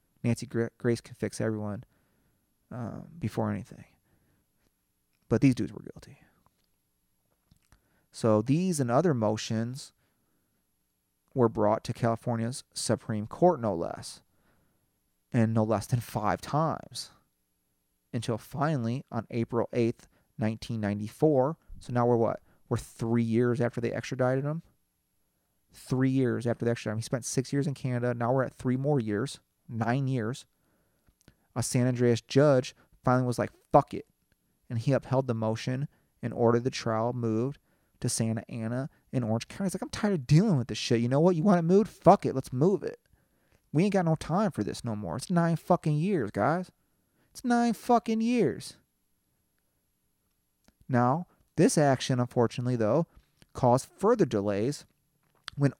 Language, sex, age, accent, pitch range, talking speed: English, male, 30-49, American, 110-140 Hz, 155 wpm